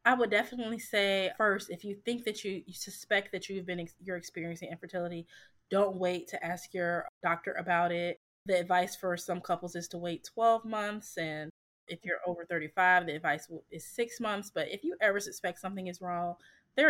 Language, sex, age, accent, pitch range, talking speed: English, female, 20-39, American, 170-205 Hz, 200 wpm